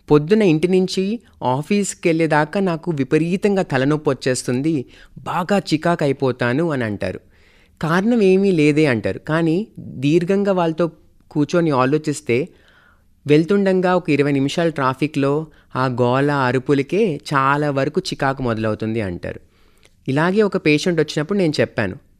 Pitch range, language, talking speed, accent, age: 125-185 Hz, Telugu, 115 wpm, native, 30-49